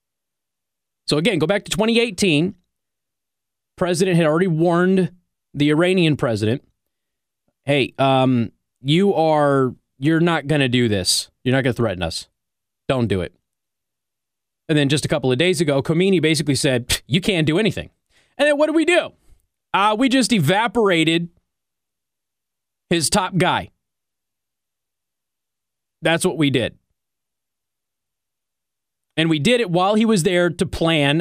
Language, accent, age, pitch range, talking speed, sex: English, American, 30-49, 140-185 Hz, 140 wpm, male